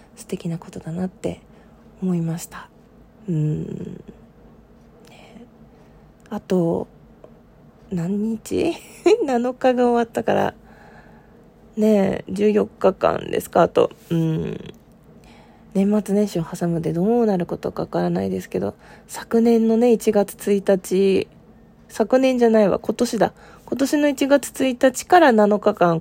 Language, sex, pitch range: Japanese, female, 180-230 Hz